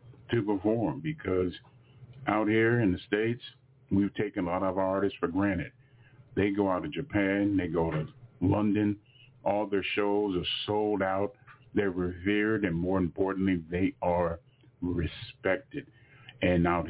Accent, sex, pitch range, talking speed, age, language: American, male, 95-125 Hz, 145 wpm, 40-59, English